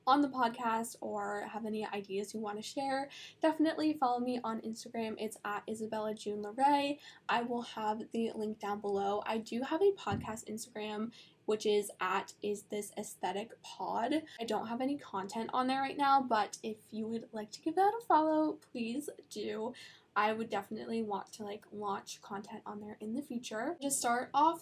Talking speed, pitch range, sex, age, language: 190 wpm, 210-250 Hz, female, 10-29, English